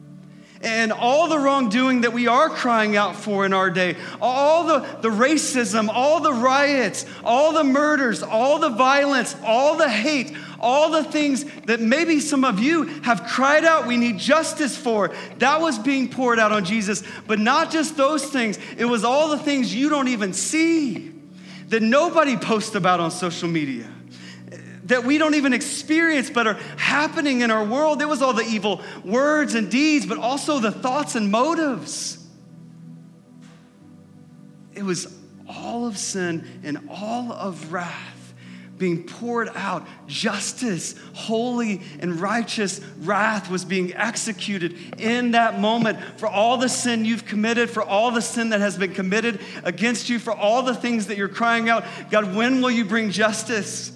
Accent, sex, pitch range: American, male, 200-270 Hz